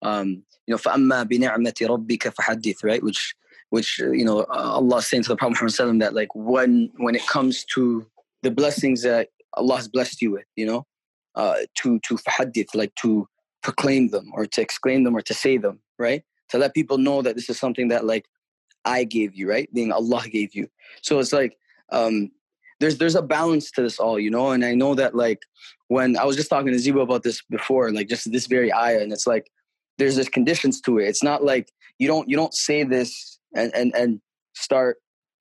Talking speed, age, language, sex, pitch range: 210 wpm, 20-39, English, male, 115-145 Hz